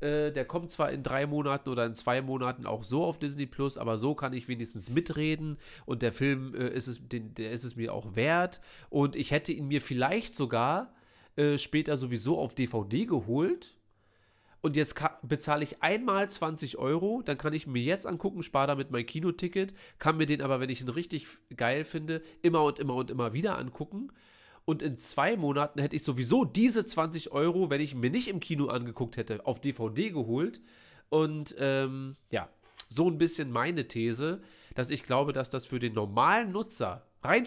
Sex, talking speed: male, 185 wpm